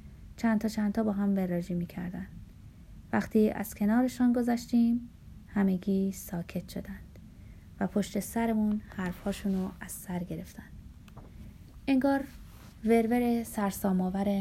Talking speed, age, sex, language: 95 wpm, 30-49, female, Persian